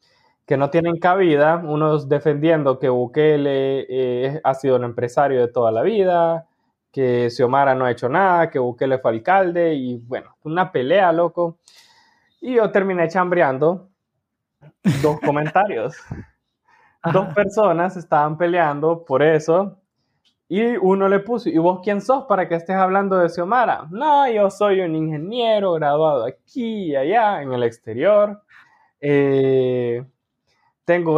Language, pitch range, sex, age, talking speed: Spanish, 140-195 Hz, male, 20-39, 140 wpm